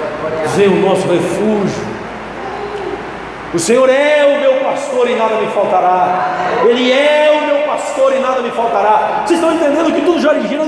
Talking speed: 170 wpm